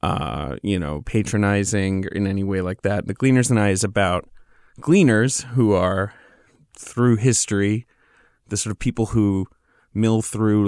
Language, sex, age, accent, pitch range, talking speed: English, male, 30-49, American, 100-120 Hz, 150 wpm